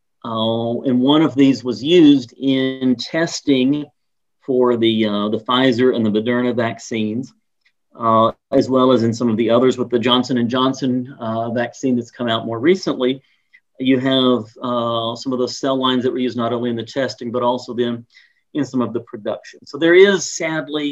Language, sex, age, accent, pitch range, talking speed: English, male, 40-59, American, 120-140 Hz, 190 wpm